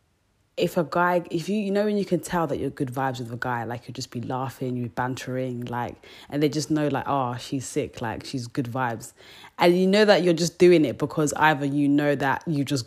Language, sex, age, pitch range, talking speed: English, female, 20-39, 135-195 Hz, 245 wpm